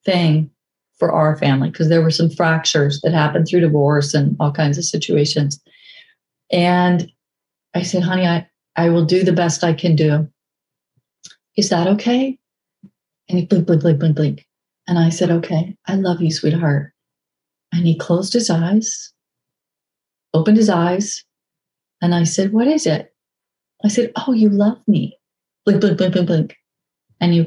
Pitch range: 160-195 Hz